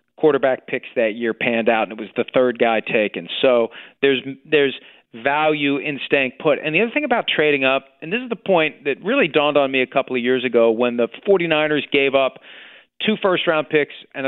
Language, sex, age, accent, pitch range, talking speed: English, male, 40-59, American, 130-170 Hz, 215 wpm